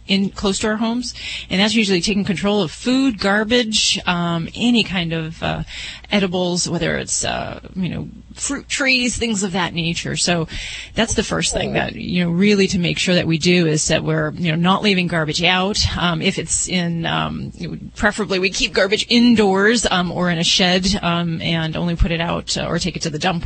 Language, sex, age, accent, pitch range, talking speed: English, female, 30-49, American, 170-205 Hz, 210 wpm